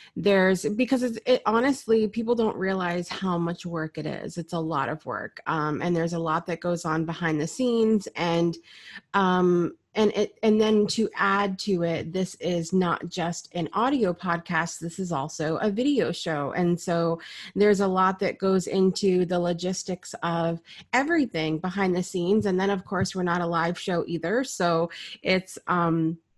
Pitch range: 170-200 Hz